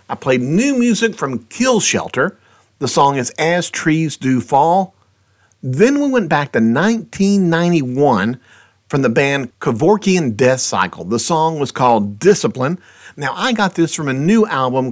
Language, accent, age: English, American, 50-69